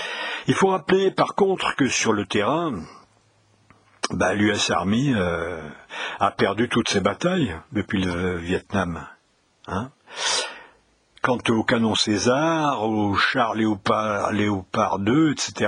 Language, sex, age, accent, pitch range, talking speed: French, male, 60-79, French, 105-140 Hz, 120 wpm